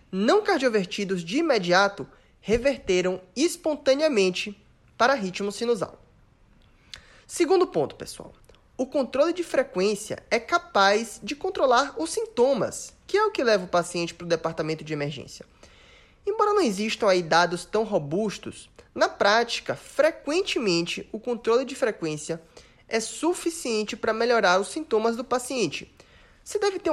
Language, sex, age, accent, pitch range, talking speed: Portuguese, male, 20-39, Brazilian, 175-260 Hz, 130 wpm